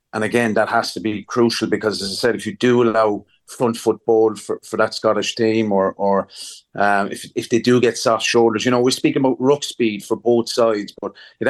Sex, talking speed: male, 230 wpm